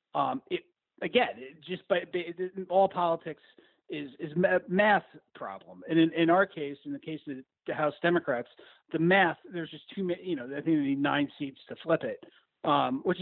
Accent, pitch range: American, 150-215 Hz